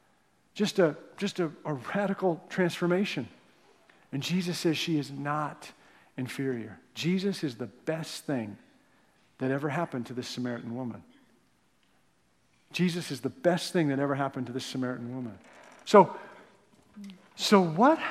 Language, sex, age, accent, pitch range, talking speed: English, male, 50-69, American, 155-205 Hz, 135 wpm